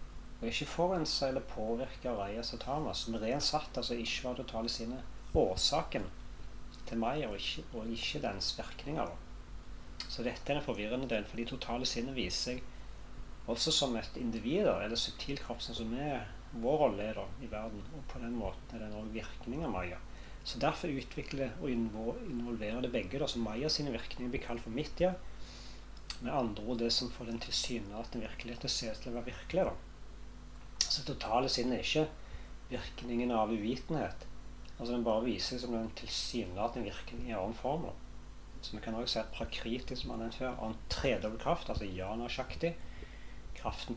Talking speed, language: 175 wpm, English